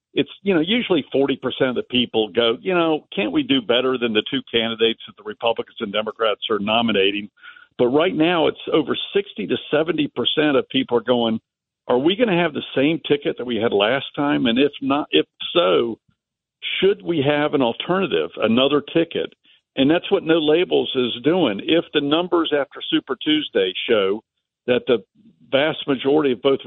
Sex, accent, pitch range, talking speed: male, American, 120-165 Hz, 190 wpm